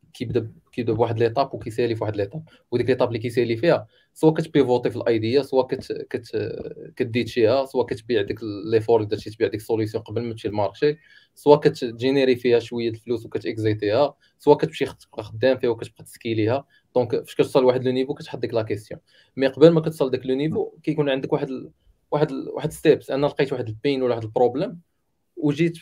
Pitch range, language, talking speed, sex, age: 120-150 Hz, Arabic, 190 wpm, male, 20-39